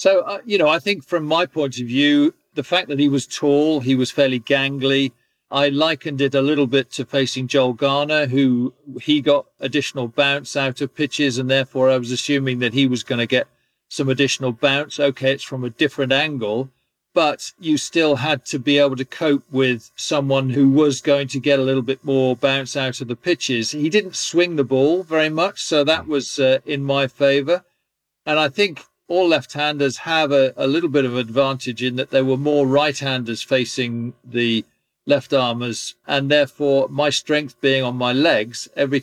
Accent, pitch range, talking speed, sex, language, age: British, 130-150 Hz, 195 wpm, male, English, 50-69